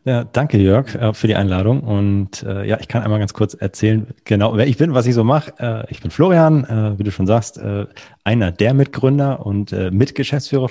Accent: German